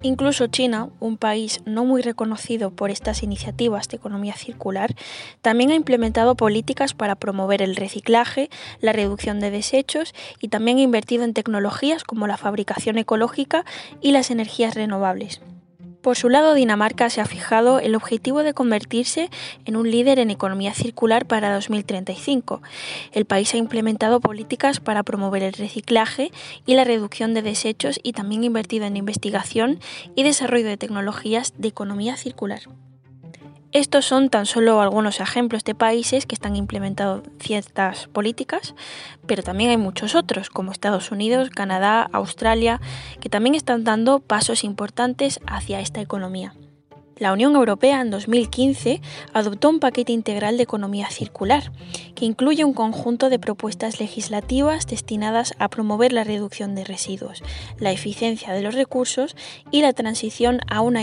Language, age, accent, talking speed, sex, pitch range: Spanish, 10-29, Spanish, 150 wpm, female, 205-245 Hz